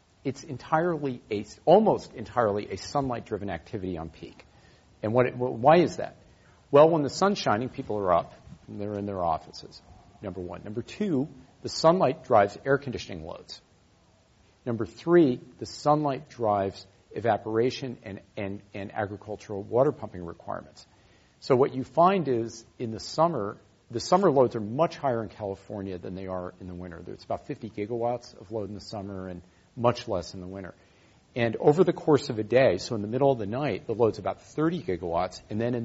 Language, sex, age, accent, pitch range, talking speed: English, male, 50-69, American, 100-130 Hz, 180 wpm